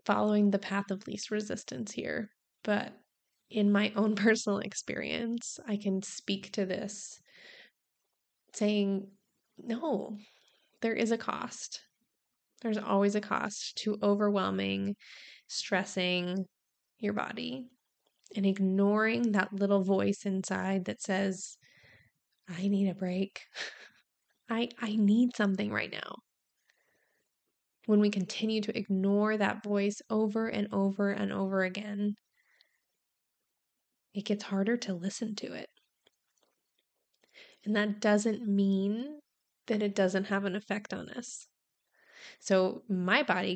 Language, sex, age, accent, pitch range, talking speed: English, female, 20-39, American, 195-220 Hz, 120 wpm